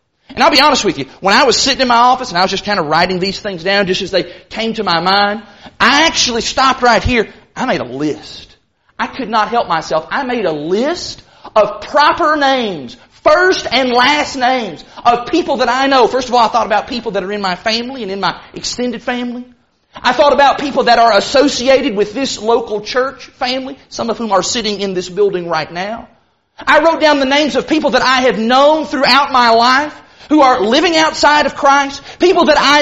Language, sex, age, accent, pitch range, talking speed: English, male, 40-59, American, 230-305 Hz, 225 wpm